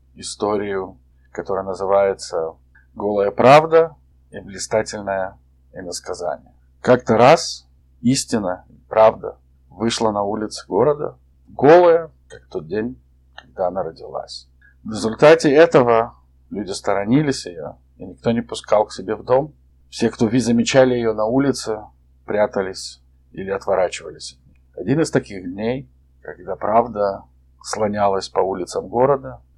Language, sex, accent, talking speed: Russian, male, native, 115 wpm